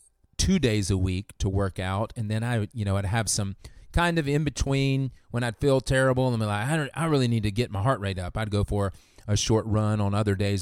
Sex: male